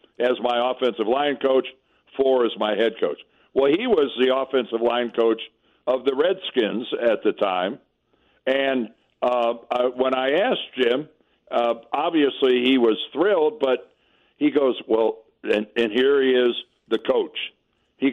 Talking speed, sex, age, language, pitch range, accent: 155 wpm, male, 60-79, English, 125-185 Hz, American